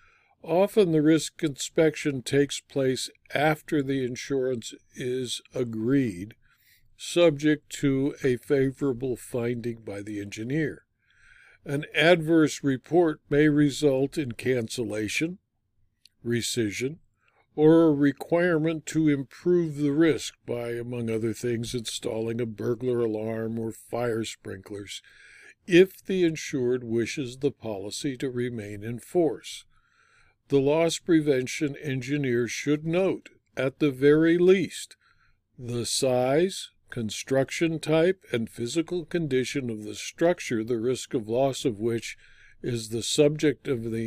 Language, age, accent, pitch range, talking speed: English, 60-79, American, 120-150 Hz, 115 wpm